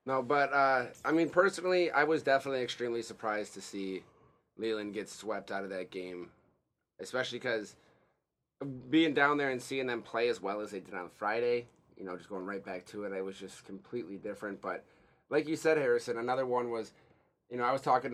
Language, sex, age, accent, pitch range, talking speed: English, male, 30-49, American, 110-130 Hz, 205 wpm